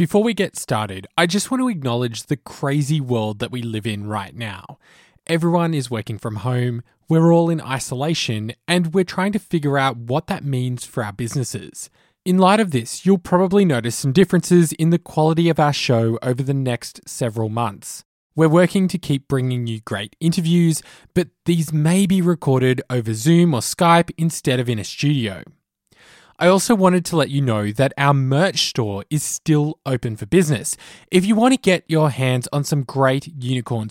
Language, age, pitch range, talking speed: English, 20-39, 115-165 Hz, 190 wpm